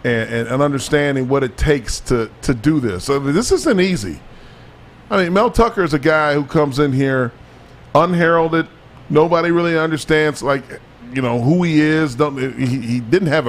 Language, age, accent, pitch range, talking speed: English, 40-59, American, 125-155 Hz, 185 wpm